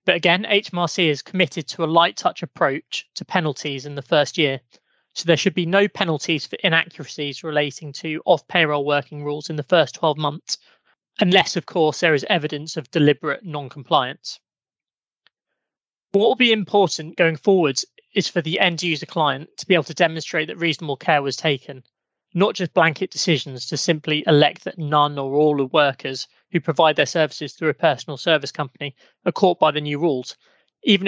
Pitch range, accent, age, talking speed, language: 145-175 Hz, British, 20-39, 180 wpm, English